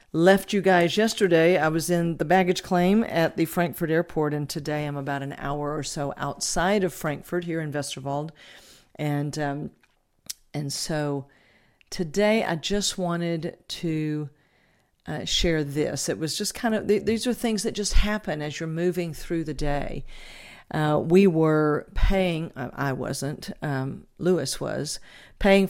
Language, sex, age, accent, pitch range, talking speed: English, female, 50-69, American, 145-175 Hz, 155 wpm